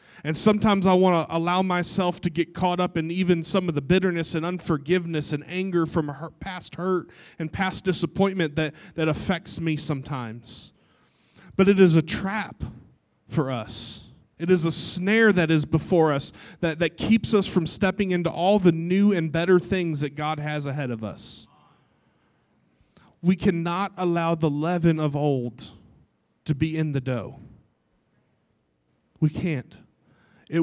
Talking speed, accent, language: 160 wpm, American, English